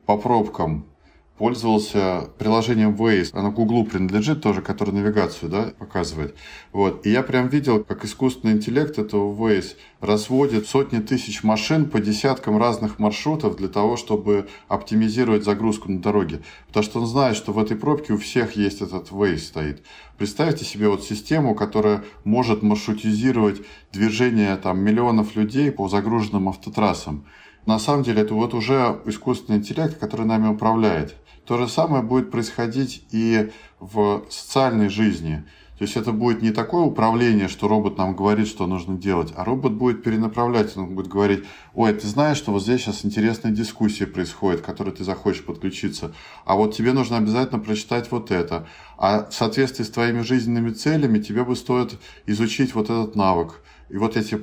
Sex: male